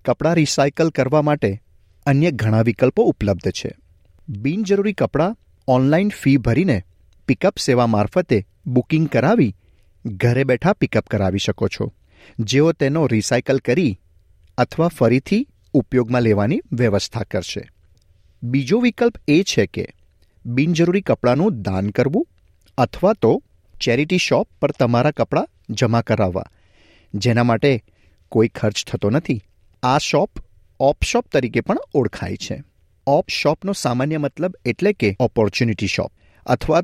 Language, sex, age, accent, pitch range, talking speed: Gujarati, male, 40-59, native, 100-150 Hz, 125 wpm